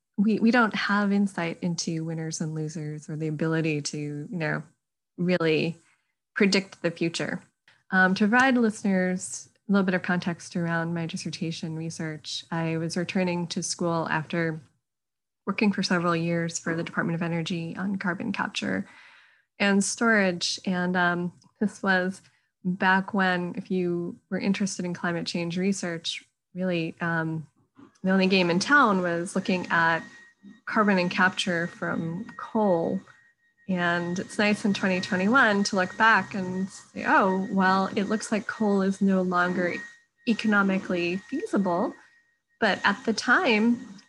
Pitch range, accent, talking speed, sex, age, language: 175-210 Hz, American, 145 wpm, female, 20-39, English